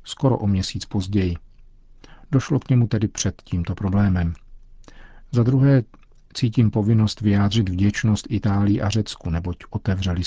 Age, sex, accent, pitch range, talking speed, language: 50-69, male, native, 95-110 Hz, 130 wpm, Czech